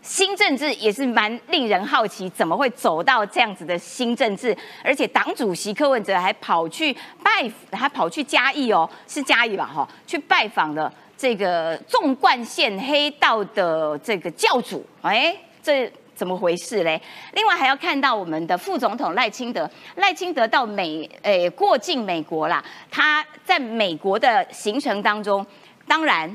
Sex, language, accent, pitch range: female, Chinese, American, 210-315 Hz